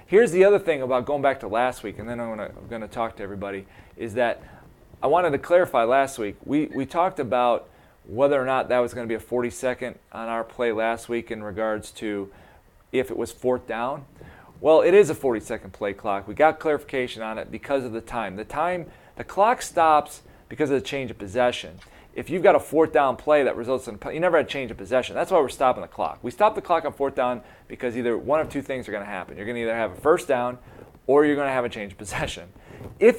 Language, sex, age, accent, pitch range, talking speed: English, male, 40-59, American, 110-150 Hz, 250 wpm